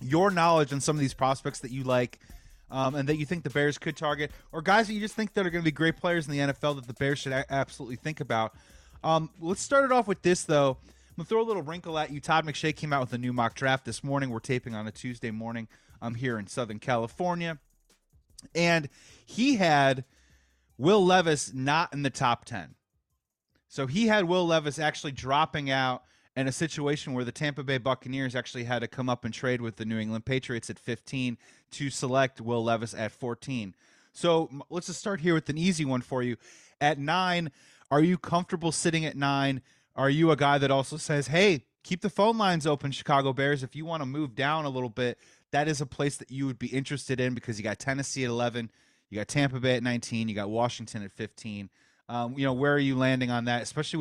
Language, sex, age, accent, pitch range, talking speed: English, male, 30-49, American, 120-155 Hz, 230 wpm